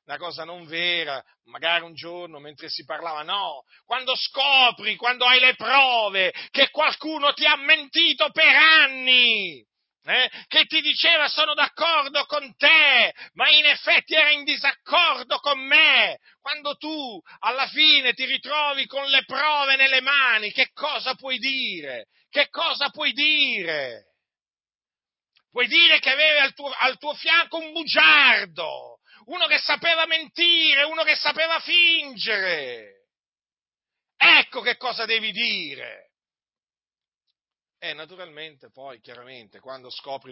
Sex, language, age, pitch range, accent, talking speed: male, Italian, 40-59, 215-300 Hz, native, 130 wpm